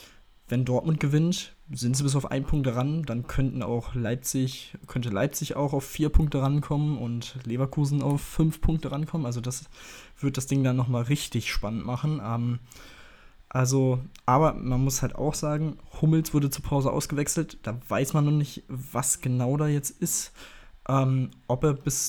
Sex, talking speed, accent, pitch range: male, 175 wpm, German, 120-140 Hz